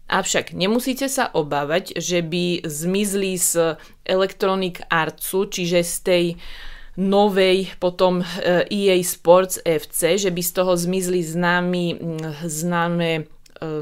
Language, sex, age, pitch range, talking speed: English, female, 20-39, 155-185 Hz, 110 wpm